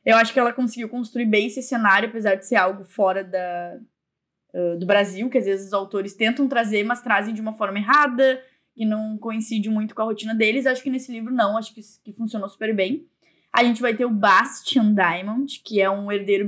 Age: 10-29